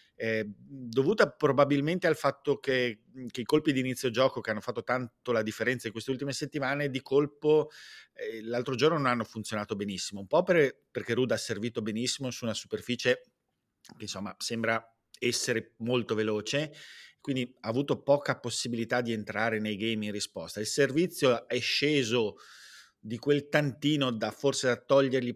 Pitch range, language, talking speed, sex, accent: 110-140 Hz, Italian, 165 wpm, male, native